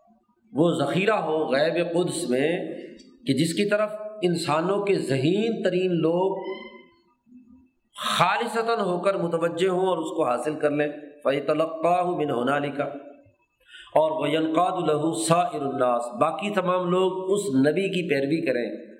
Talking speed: 130 wpm